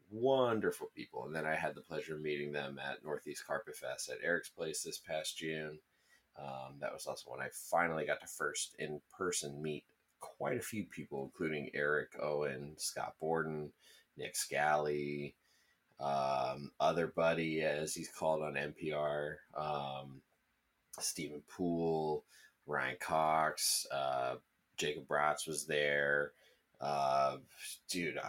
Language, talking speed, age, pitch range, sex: English, 135 wpm, 30-49, 70-85 Hz, male